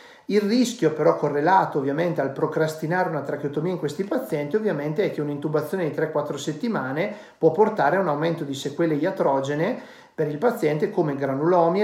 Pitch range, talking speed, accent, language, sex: 145-190 Hz, 160 wpm, native, Italian, male